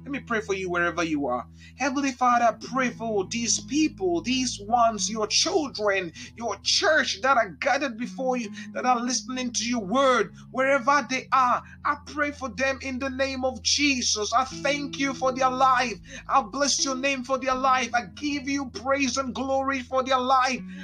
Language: Finnish